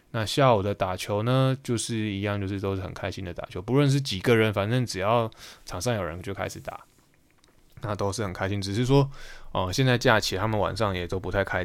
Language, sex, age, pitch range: Chinese, male, 20-39, 95-110 Hz